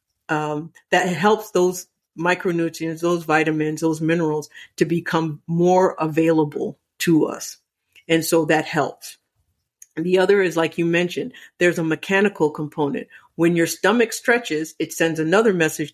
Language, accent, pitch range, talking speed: English, American, 155-180 Hz, 140 wpm